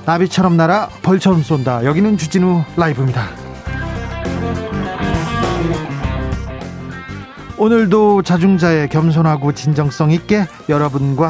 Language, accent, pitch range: Korean, native, 145-185 Hz